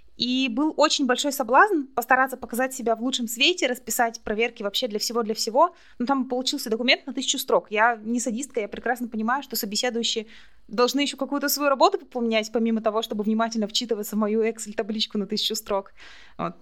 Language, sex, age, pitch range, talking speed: Russian, female, 20-39, 205-255 Hz, 180 wpm